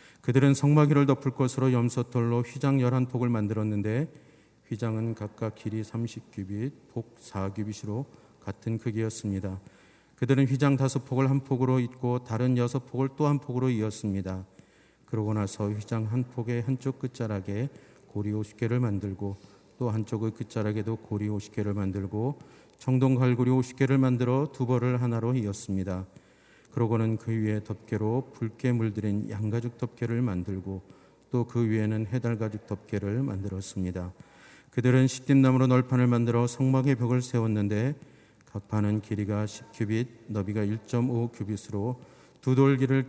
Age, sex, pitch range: 40-59, male, 105-130 Hz